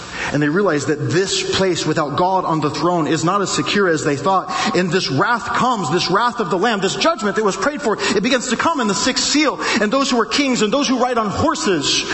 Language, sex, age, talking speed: English, male, 40-59, 255 wpm